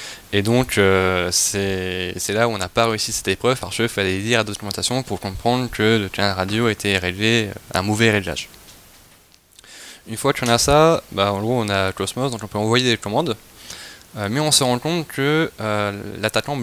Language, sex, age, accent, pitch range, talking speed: French, male, 20-39, French, 100-120 Hz, 210 wpm